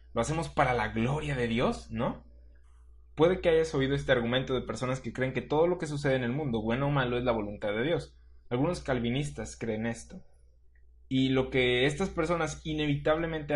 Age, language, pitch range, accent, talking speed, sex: 20-39, Spanish, 115-145 Hz, Mexican, 195 wpm, male